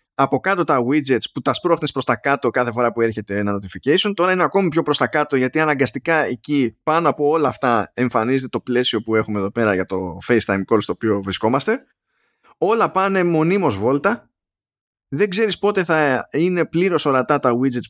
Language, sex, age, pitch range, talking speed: Greek, male, 20-39, 120-170 Hz, 190 wpm